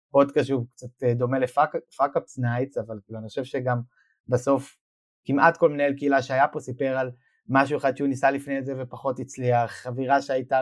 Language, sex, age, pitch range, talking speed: Hebrew, male, 20-39, 120-145 Hz, 175 wpm